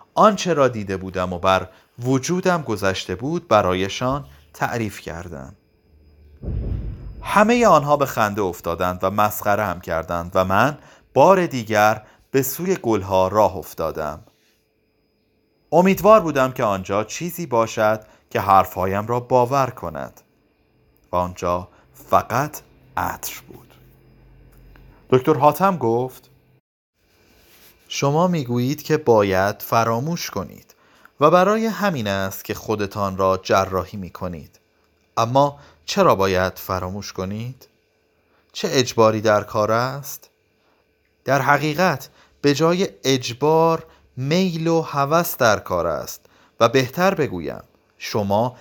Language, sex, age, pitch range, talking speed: Persian, male, 30-49, 95-145 Hz, 110 wpm